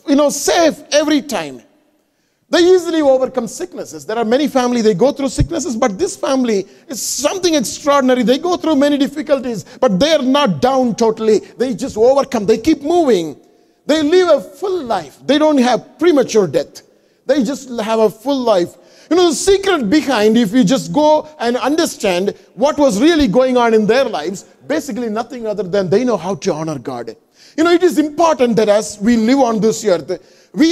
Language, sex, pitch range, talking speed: English, male, 215-290 Hz, 190 wpm